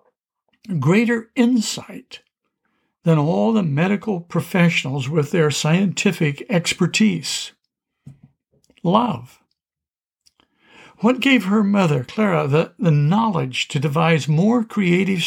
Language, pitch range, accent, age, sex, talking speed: English, 150-210 Hz, American, 60-79, male, 95 wpm